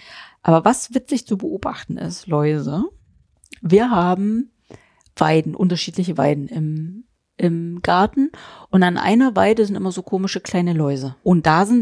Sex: female